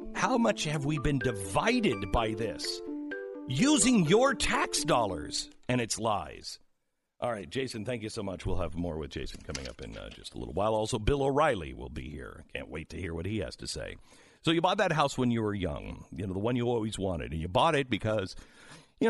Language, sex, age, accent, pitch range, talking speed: English, male, 50-69, American, 90-140 Hz, 225 wpm